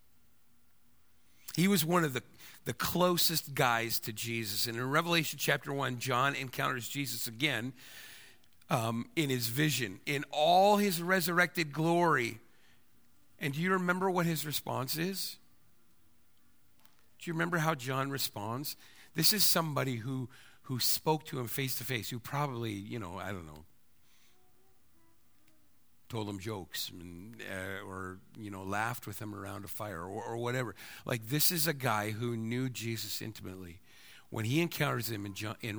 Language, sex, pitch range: English, male, 105-145 Hz